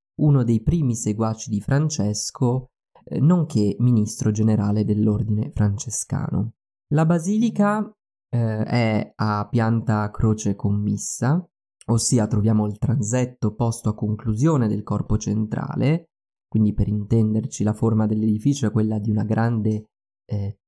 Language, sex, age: Italian, male, 20-39